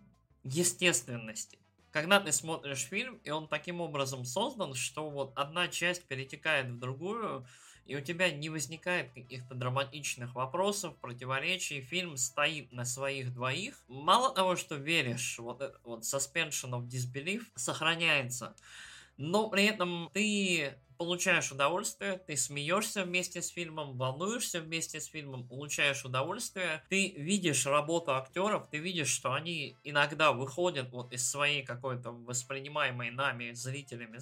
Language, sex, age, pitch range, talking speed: Russian, male, 20-39, 125-170 Hz, 130 wpm